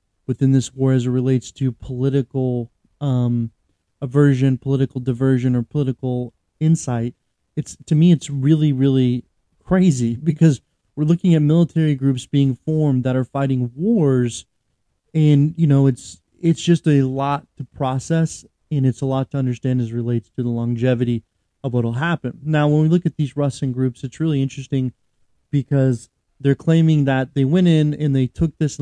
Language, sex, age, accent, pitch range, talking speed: English, male, 30-49, American, 125-150 Hz, 170 wpm